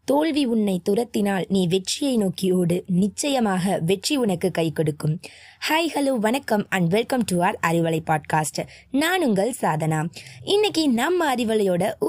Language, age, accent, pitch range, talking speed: Tamil, 20-39, native, 180-290 Hz, 115 wpm